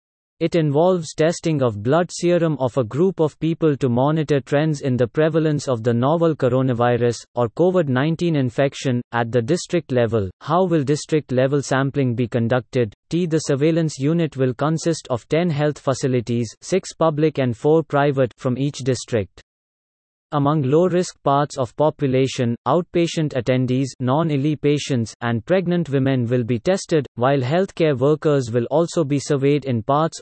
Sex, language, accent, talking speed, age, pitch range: male, English, Indian, 150 wpm, 30-49, 130-160 Hz